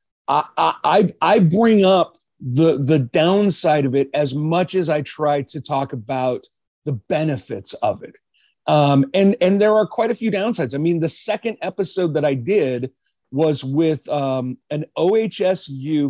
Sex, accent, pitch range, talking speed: male, American, 145-195 Hz, 165 wpm